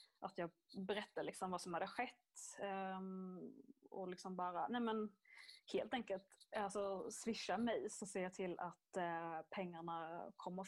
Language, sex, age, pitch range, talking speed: Swedish, female, 20-39, 180-200 Hz, 140 wpm